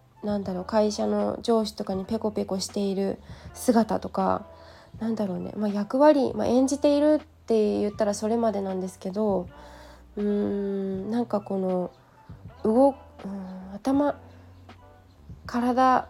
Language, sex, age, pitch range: Japanese, female, 20-39, 190-255 Hz